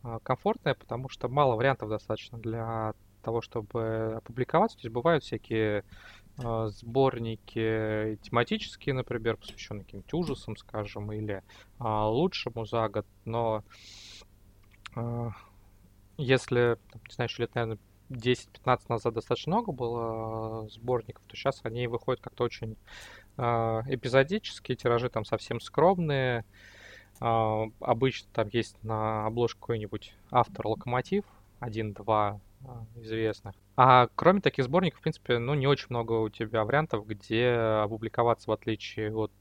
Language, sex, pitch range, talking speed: Russian, male, 105-125 Hz, 120 wpm